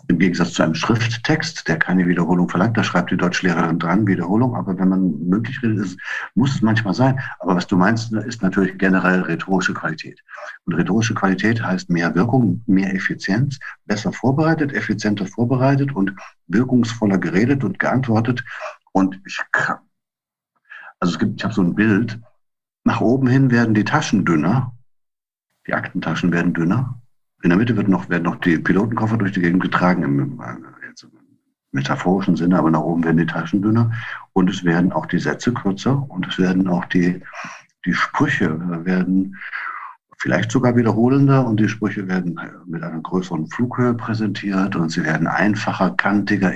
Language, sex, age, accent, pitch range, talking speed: German, male, 60-79, German, 95-120 Hz, 165 wpm